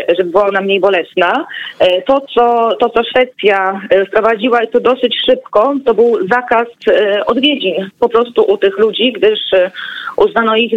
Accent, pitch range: native, 195-250 Hz